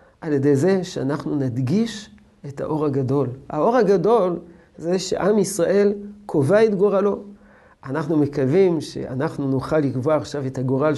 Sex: male